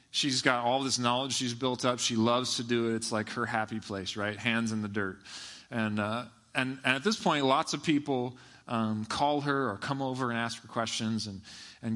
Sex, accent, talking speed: male, American, 225 wpm